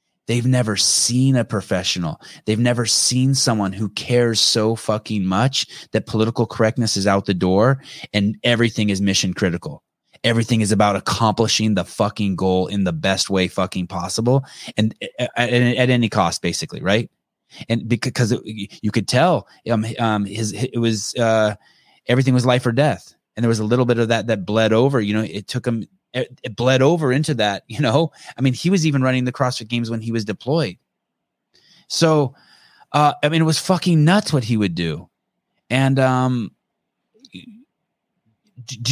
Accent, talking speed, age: American, 175 wpm, 20-39